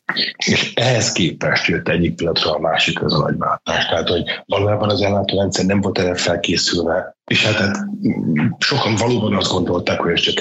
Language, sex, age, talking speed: Hungarian, male, 30-49, 180 wpm